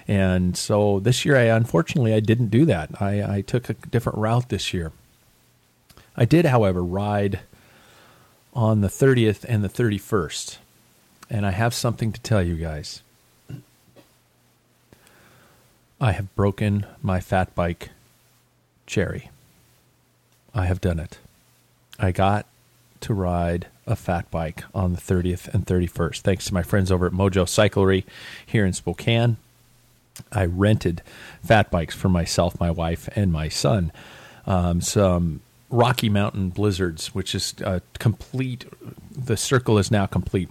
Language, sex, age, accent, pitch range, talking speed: English, male, 40-59, American, 90-110 Hz, 140 wpm